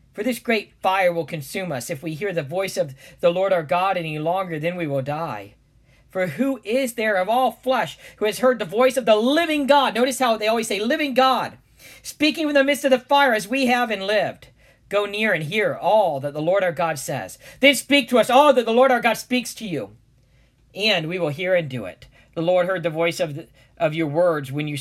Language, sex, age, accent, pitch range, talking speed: English, male, 50-69, American, 160-240 Hz, 245 wpm